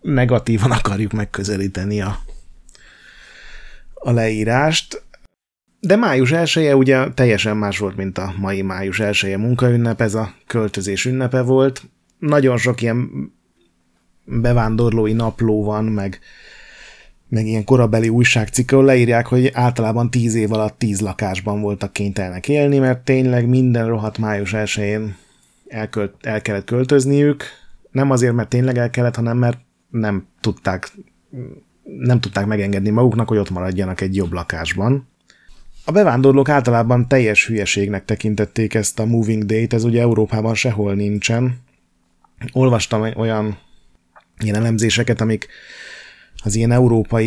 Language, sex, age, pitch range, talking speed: Hungarian, male, 30-49, 100-120 Hz, 125 wpm